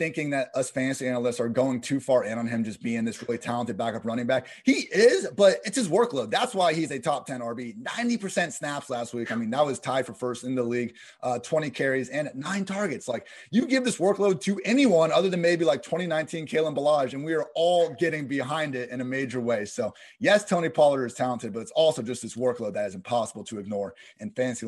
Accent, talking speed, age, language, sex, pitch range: American, 235 wpm, 30-49, English, male, 125-165 Hz